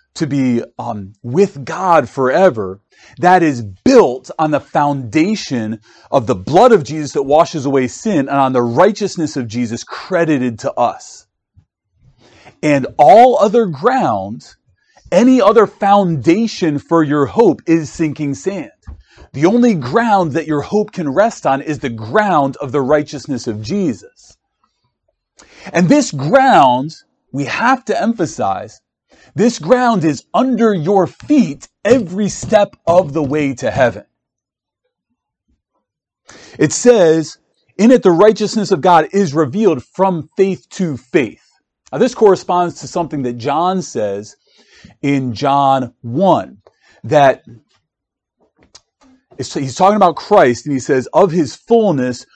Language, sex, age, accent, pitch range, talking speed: English, male, 40-59, American, 135-200 Hz, 135 wpm